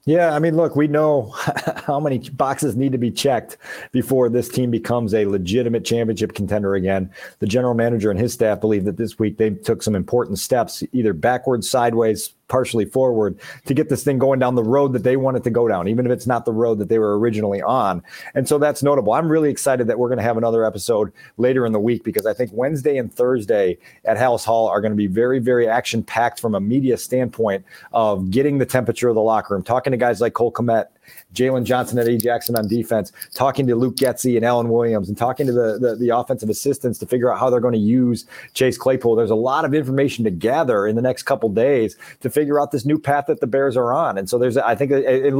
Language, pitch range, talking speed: English, 115-135 Hz, 240 wpm